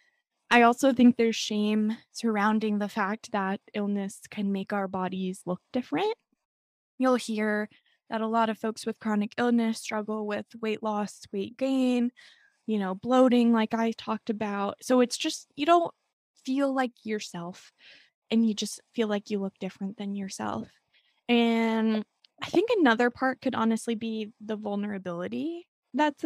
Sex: female